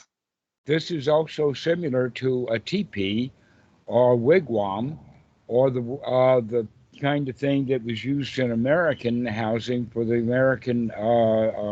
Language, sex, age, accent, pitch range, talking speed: English, male, 60-79, American, 120-140 Hz, 140 wpm